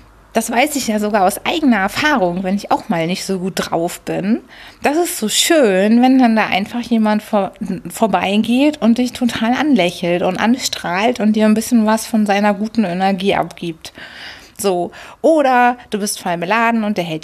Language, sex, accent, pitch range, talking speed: German, female, German, 190-245 Hz, 180 wpm